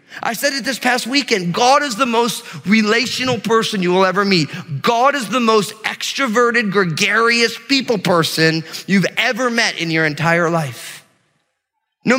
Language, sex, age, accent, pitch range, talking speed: English, male, 30-49, American, 165-240 Hz, 160 wpm